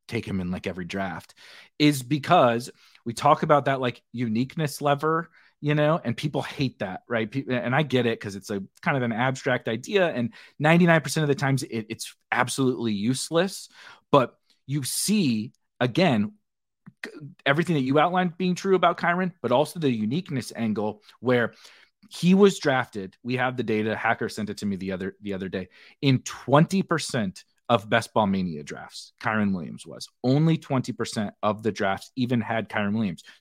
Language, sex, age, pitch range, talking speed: English, male, 30-49, 115-170 Hz, 175 wpm